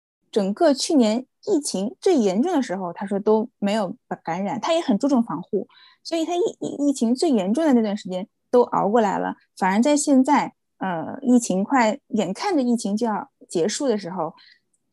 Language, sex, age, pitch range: Chinese, female, 20-39, 195-260 Hz